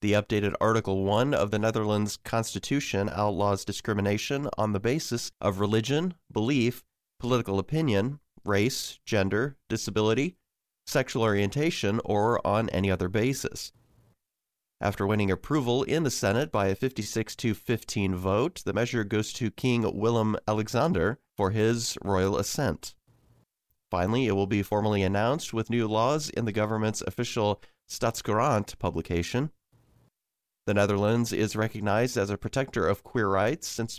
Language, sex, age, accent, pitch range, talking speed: English, male, 40-59, American, 100-120 Hz, 130 wpm